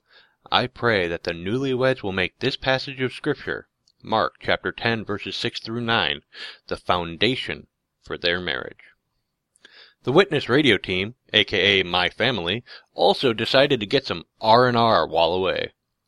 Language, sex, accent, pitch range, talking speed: English, male, American, 95-130 Hz, 150 wpm